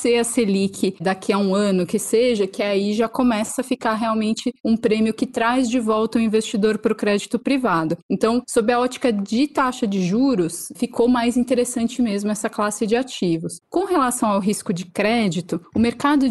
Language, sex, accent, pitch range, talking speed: Portuguese, female, Brazilian, 205-260 Hz, 190 wpm